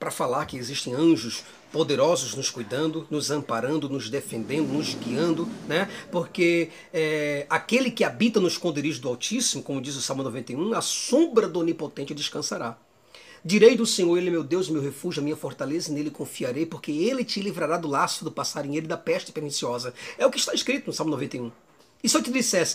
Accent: Brazilian